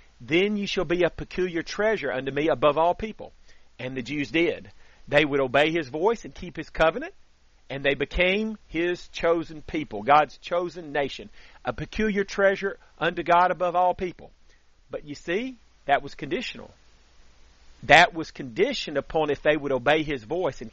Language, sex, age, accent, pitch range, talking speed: English, male, 40-59, American, 135-190 Hz, 170 wpm